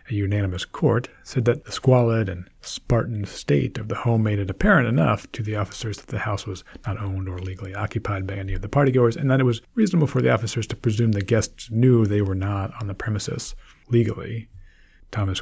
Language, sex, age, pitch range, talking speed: English, male, 40-59, 100-120 Hz, 215 wpm